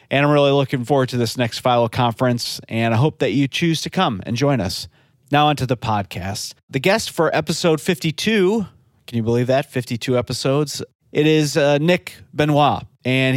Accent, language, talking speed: American, English, 190 wpm